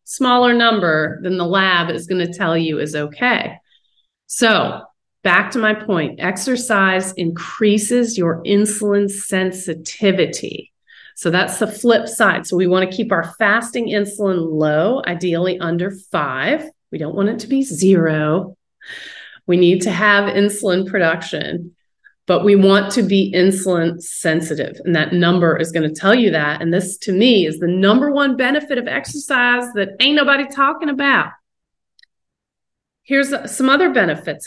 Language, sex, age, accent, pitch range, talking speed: English, female, 30-49, American, 175-220 Hz, 155 wpm